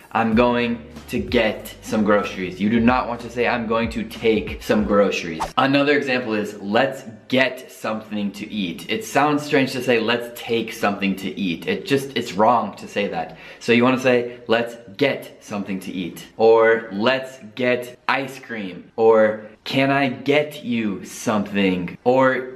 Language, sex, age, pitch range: Italian, male, 20-39, 110-135 Hz